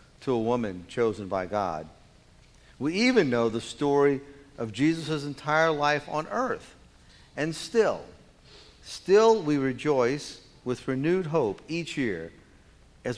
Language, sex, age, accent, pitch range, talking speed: English, male, 50-69, American, 110-145 Hz, 125 wpm